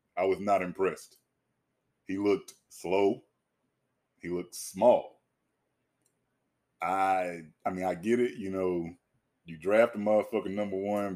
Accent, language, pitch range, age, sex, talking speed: American, English, 95-115 Hz, 20-39, male, 130 wpm